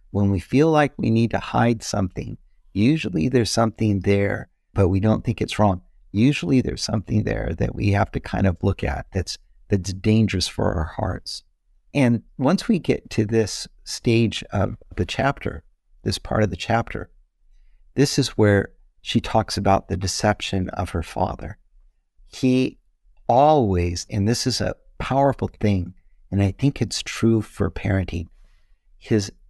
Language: English